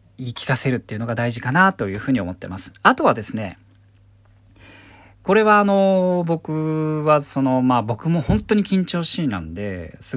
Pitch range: 100-145 Hz